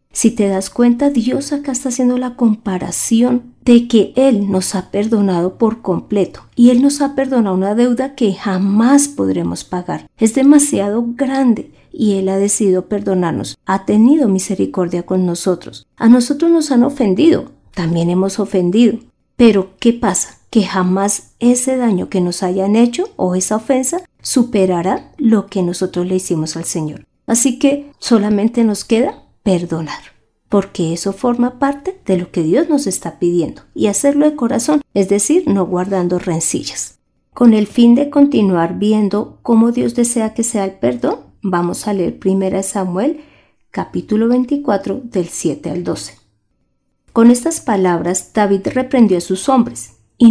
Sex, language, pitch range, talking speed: female, Spanish, 185-245 Hz, 155 wpm